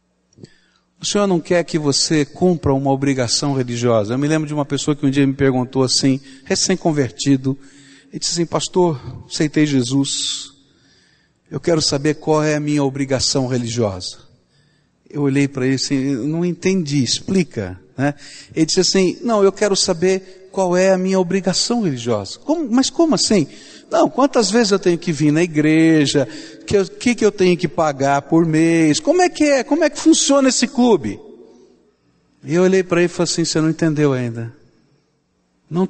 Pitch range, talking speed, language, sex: 120-170 Hz, 175 wpm, Portuguese, male